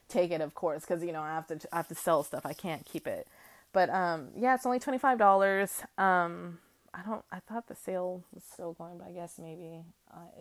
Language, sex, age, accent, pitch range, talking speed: English, female, 20-39, American, 170-200 Hz, 230 wpm